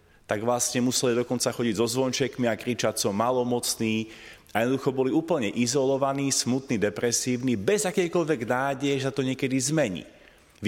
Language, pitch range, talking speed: Slovak, 115-145 Hz, 145 wpm